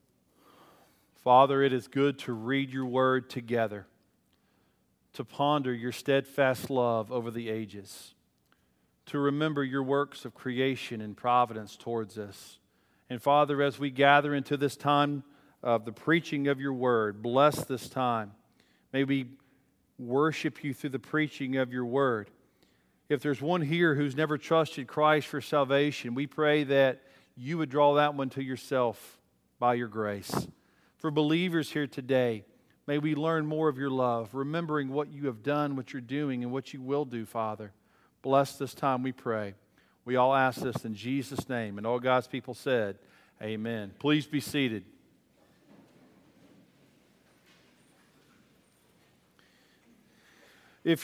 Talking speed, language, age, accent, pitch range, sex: 145 wpm, English, 40-59, American, 125-150 Hz, male